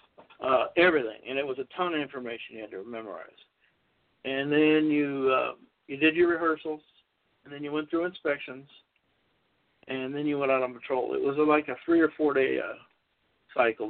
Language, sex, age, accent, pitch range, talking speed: English, male, 60-79, American, 135-180 Hz, 195 wpm